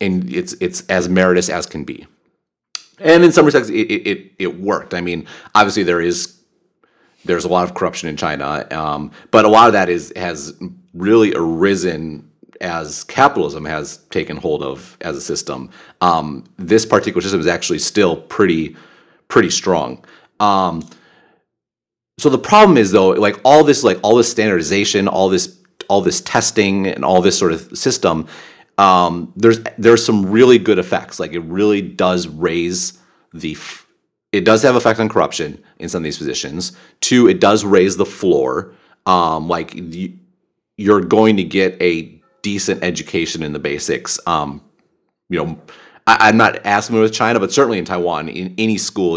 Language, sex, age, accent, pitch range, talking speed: English, male, 30-49, American, 90-115 Hz, 175 wpm